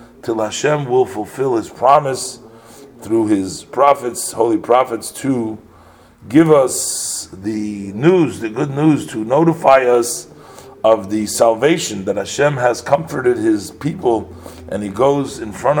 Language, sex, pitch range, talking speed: English, male, 100-130 Hz, 135 wpm